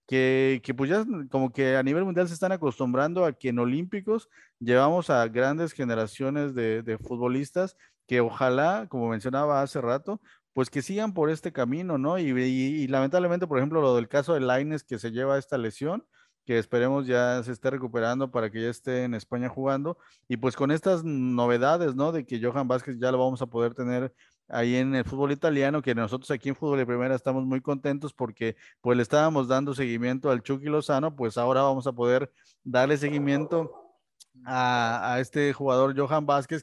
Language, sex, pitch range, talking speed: Spanish, male, 125-150 Hz, 195 wpm